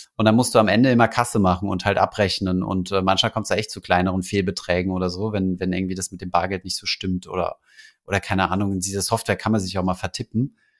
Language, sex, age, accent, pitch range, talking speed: German, male, 30-49, German, 95-120 Hz, 255 wpm